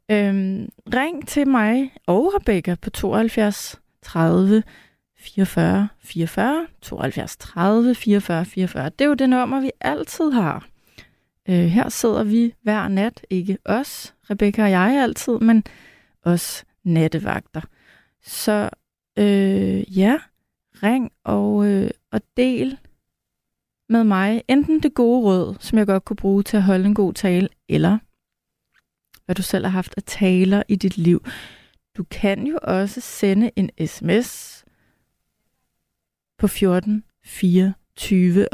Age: 30-49